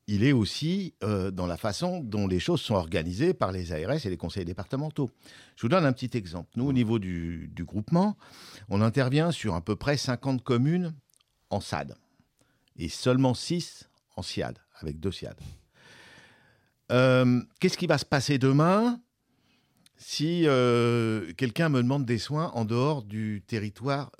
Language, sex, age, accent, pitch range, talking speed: French, male, 50-69, French, 100-140 Hz, 165 wpm